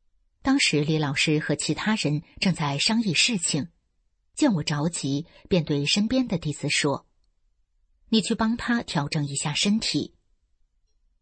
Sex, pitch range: female, 135-195 Hz